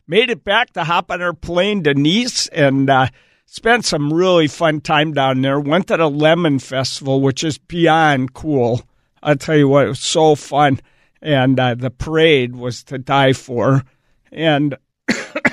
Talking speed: 170 wpm